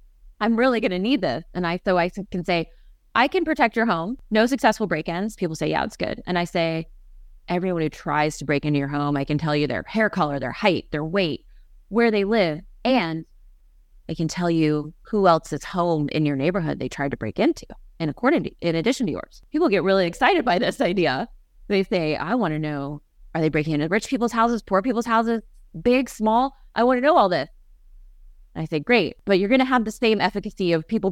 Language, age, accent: English, 30-49, American